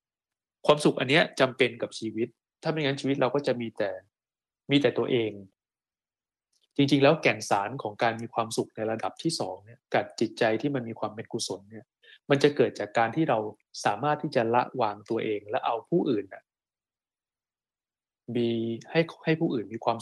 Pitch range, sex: 110-145 Hz, male